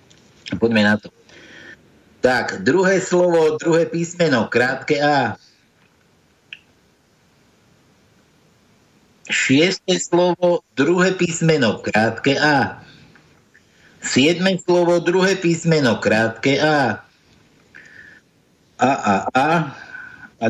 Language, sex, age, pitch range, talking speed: Slovak, male, 60-79, 110-170 Hz, 75 wpm